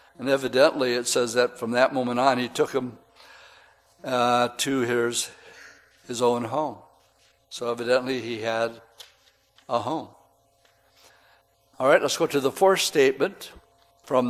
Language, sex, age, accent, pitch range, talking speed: English, male, 60-79, American, 125-150 Hz, 140 wpm